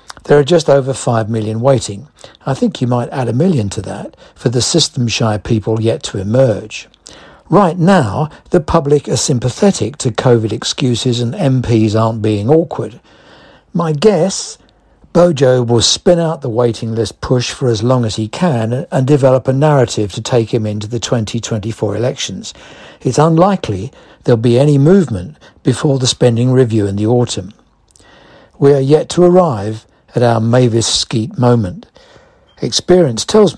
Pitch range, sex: 110-140 Hz, male